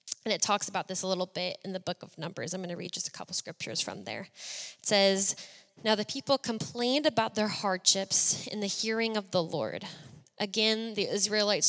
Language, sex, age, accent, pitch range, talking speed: English, female, 10-29, American, 185-210 Hz, 215 wpm